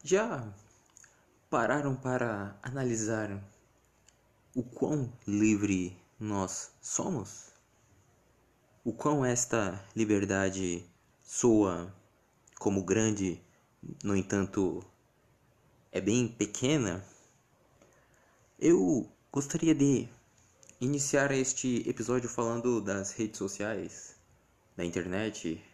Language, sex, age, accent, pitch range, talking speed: Portuguese, male, 20-39, Brazilian, 95-125 Hz, 75 wpm